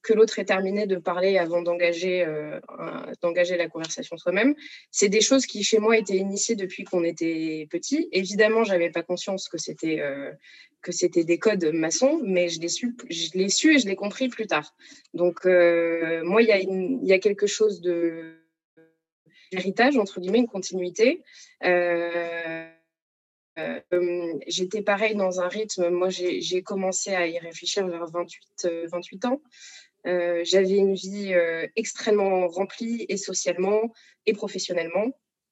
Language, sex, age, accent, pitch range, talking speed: French, female, 20-39, French, 170-215 Hz, 165 wpm